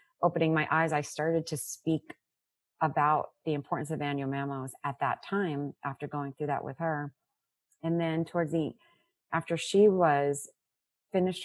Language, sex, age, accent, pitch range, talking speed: English, female, 30-49, American, 135-160 Hz, 155 wpm